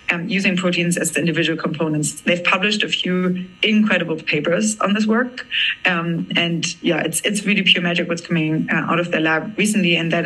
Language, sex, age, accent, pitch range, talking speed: English, female, 20-39, German, 165-195 Hz, 200 wpm